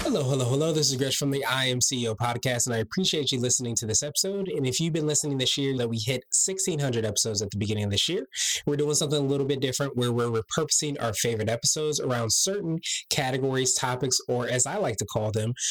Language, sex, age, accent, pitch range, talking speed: English, male, 20-39, American, 120-155 Hz, 235 wpm